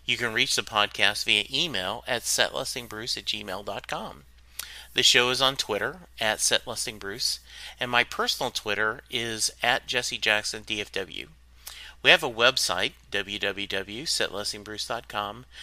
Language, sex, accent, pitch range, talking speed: English, male, American, 105-145 Hz, 115 wpm